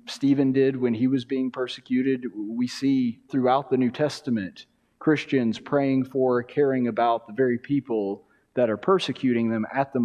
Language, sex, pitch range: English, male, 120-150 Hz